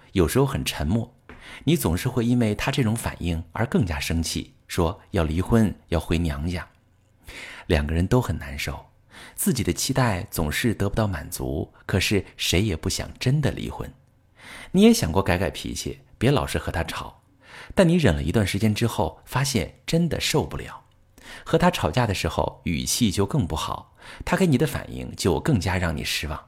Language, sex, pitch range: Chinese, male, 85-125 Hz